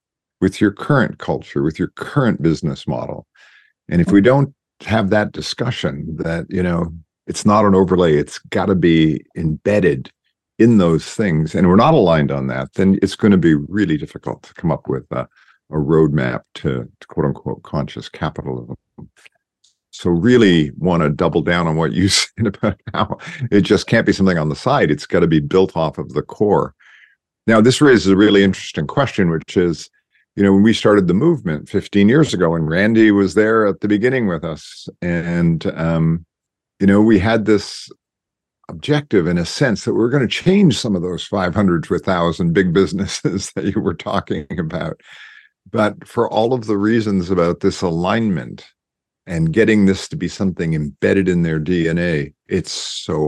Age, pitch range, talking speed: 50-69, 80-105 Hz, 185 wpm